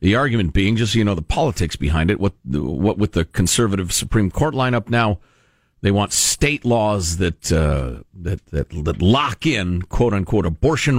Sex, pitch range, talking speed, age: male, 95-120 Hz, 185 wpm, 50-69